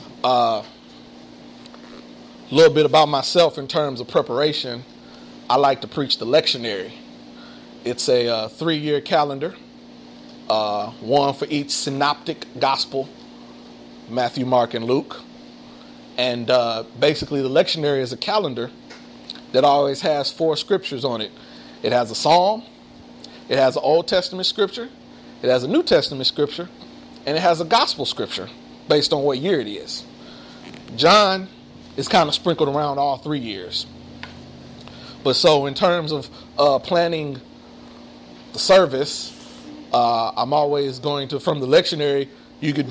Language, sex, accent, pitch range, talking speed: English, male, American, 110-155 Hz, 145 wpm